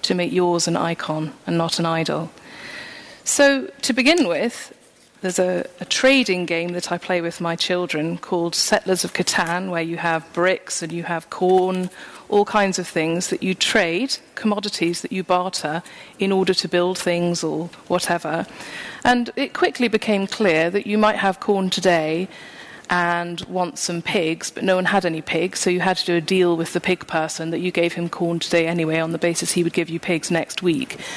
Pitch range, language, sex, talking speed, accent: 170-215 Hz, English, female, 200 wpm, British